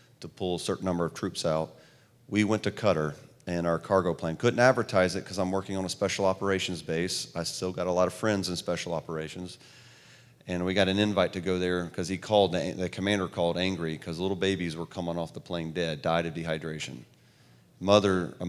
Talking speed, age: 215 wpm, 40-59